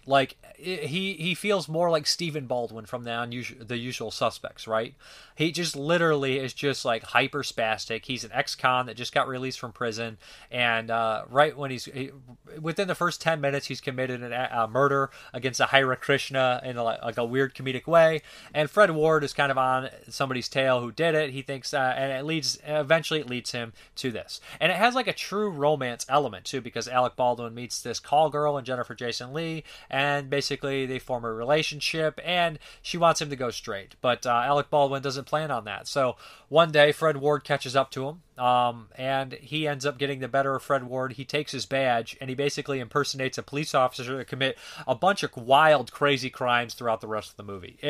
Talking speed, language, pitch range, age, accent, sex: 210 wpm, English, 125-150 Hz, 20-39, American, male